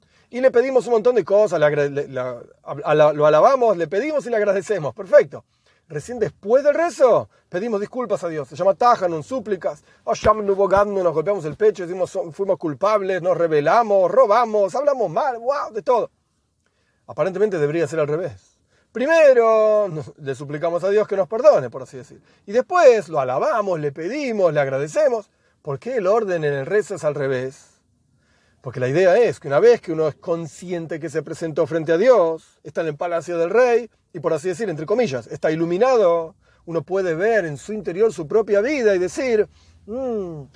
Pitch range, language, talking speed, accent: 155-230 Hz, Spanish, 185 wpm, Argentinian